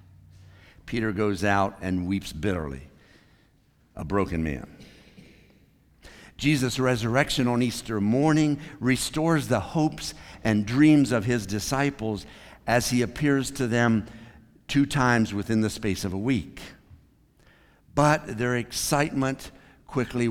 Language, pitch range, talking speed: English, 95-125 Hz, 115 wpm